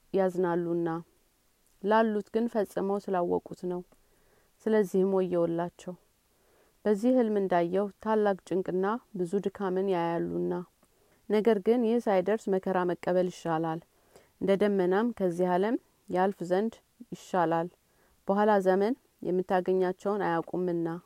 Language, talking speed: Amharic, 95 wpm